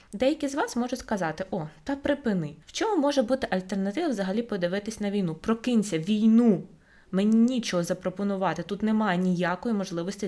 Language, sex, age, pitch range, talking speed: Ukrainian, female, 20-39, 185-225 Hz, 150 wpm